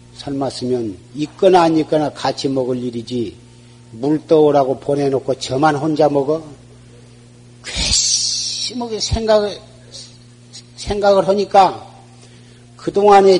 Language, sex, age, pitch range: Korean, male, 50-69, 120-155 Hz